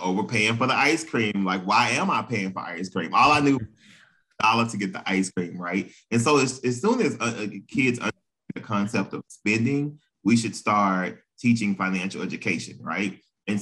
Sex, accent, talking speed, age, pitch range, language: male, American, 205 wpm, 20-39, 95-115 Hz, English